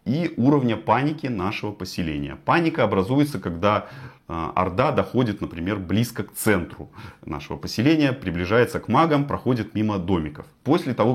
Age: 30-49